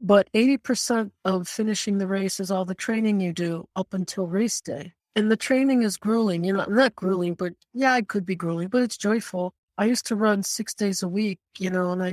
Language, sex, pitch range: English, female, 185-225 Hz